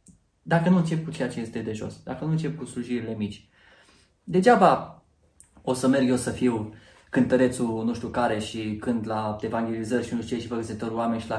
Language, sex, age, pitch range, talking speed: Romanian, male, 20-39, 115-135 Hz, 205 wpm